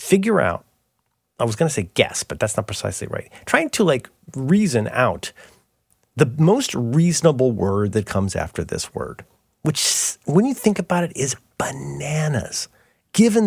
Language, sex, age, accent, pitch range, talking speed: English, male, 40-59, American, 115-170 Hz, 160 wpm